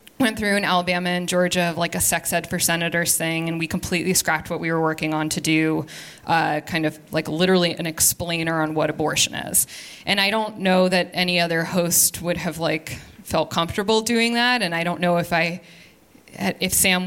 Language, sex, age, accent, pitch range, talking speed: English, female, 20-39, American, 170-210 Hz, 205 wpm